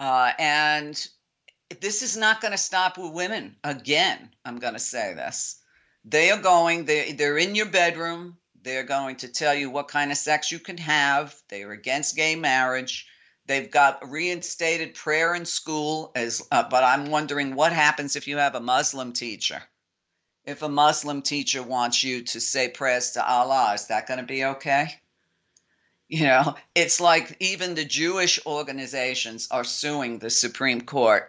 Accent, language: American, English